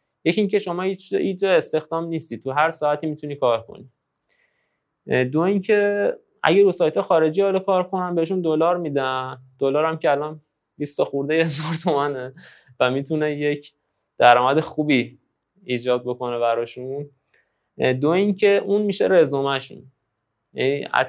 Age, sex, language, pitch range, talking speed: 20-39, male, Persian, 125-160 Hz, 130 wpm